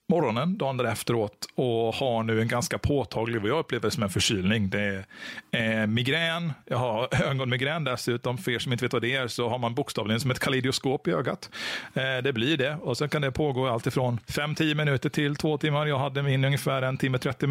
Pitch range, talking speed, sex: 115-155 Hz, 225 wpm, male